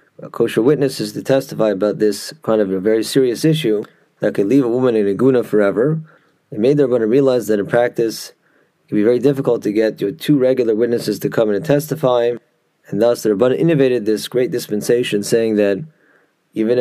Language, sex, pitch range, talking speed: English, male, 110-145 Hz, 205 wpm